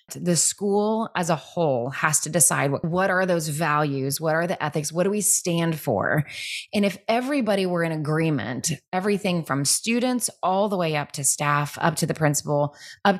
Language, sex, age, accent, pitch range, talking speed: English, female, 20-39, American, 155-190 Hz, 190 wpm